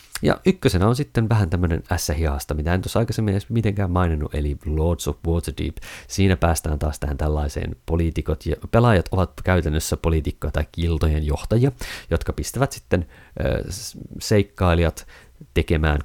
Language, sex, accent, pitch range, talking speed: Finnish, male, native, 75-95 Hz, 140 wpm